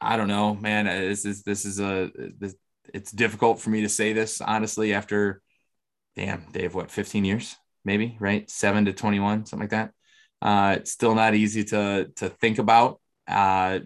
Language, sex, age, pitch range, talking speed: English, male, 20-39, 100-110 Hz, 180 wpm